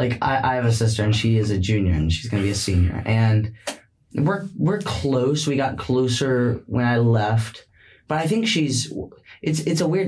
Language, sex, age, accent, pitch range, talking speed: English, male, 10-29, American, 105-120 Hz, 215 wpm